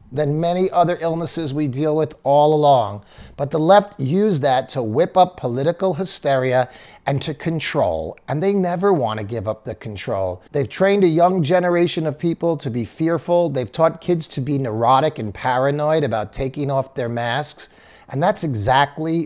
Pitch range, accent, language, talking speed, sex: 120-165 Hz, American, English, 175 wpm, male